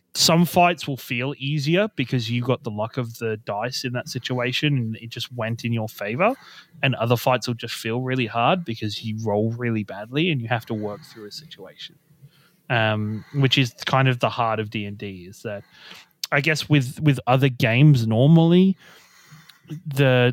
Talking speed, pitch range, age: 190 wpm, 120-155 Hz, 30-49